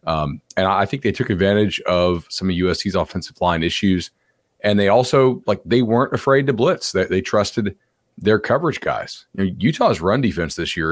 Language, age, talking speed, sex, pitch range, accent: English, 40-59, 200 wpm, male, 90-110 Hz, American